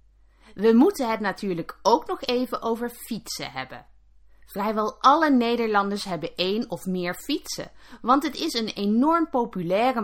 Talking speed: 145 wpm